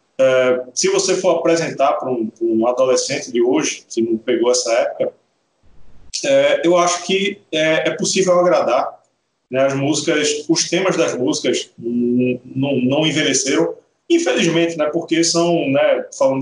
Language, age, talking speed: Portuguese, 40-59, 150 wpm